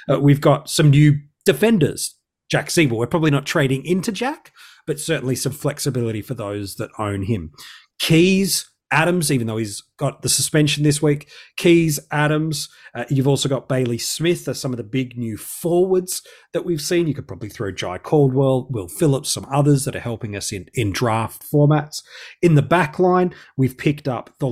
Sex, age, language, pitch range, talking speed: male, 30-49, English, 115-155 Hz, 190 wpm